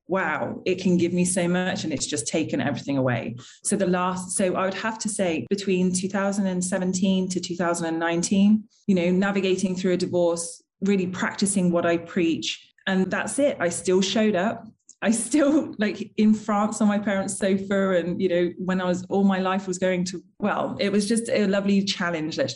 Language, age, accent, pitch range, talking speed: English, 20-39, British, 170-200 Hz, 195 wpm